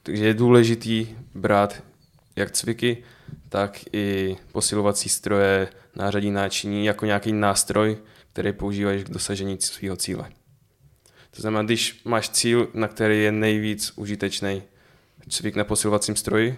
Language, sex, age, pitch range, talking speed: Czech, male, 10-29, 100-110 Hz, 125 wpm